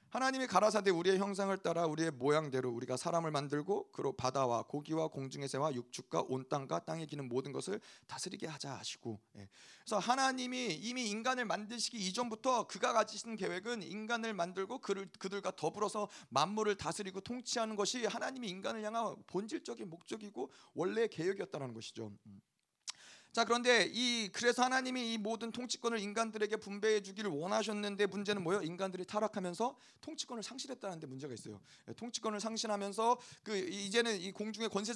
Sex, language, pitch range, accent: male, Korean, 165-220 Hz, native